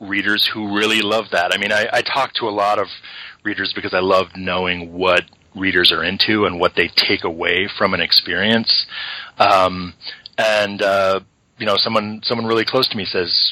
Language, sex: English, male